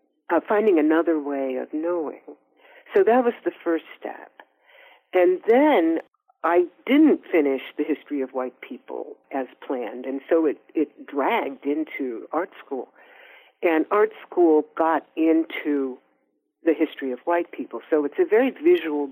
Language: English